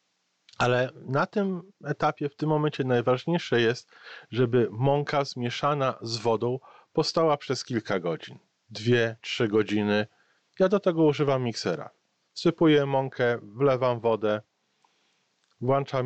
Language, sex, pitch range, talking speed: Polish, male, 110-145 Hz, 115 wpm